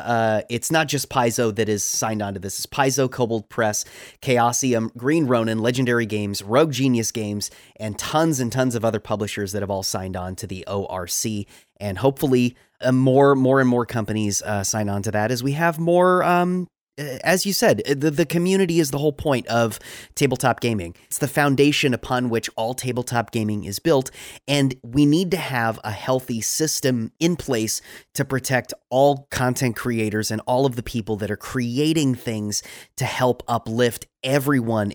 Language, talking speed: English, 185 wpm